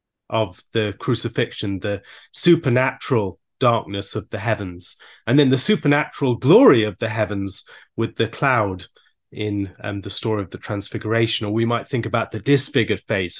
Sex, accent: male, British